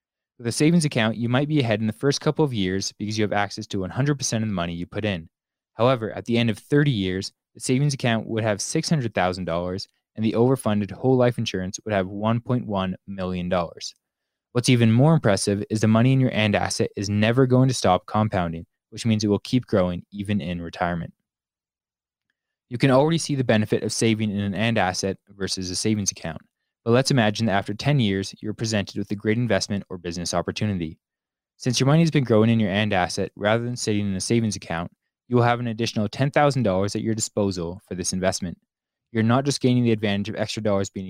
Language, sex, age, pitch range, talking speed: English, male, 20-39, 95-120 Hz, 215 wpm